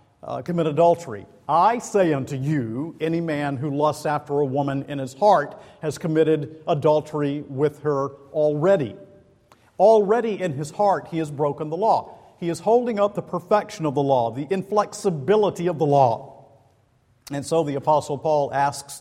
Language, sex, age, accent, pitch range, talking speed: English, male, 50-69, American, 115-165 Hz, 165 wpm